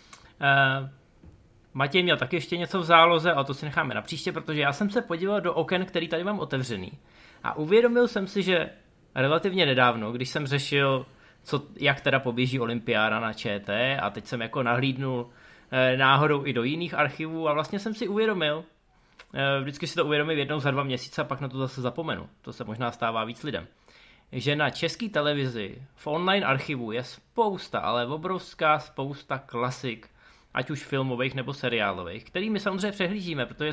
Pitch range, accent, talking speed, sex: 130-170 Hz, native, 180 wpm, male